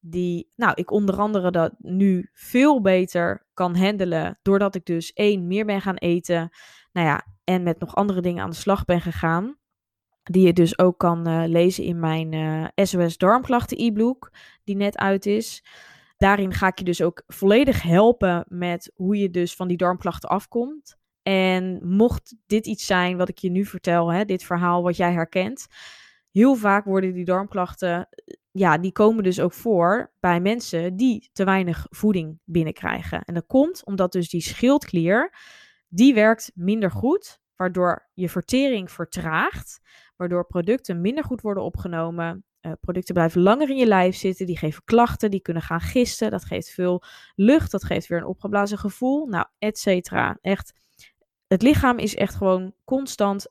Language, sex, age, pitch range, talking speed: Dutch, female, 20-39, 175-215 Hz, 170 wpm